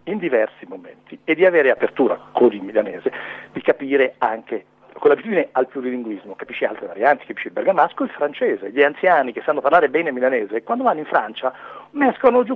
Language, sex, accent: Italian, male, native